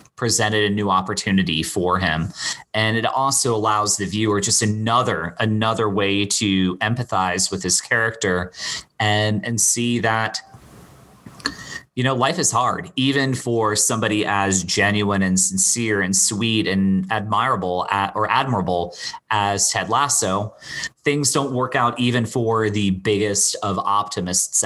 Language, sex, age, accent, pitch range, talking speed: English, male, 30-49, American, 100-125 Hz, 135 wpm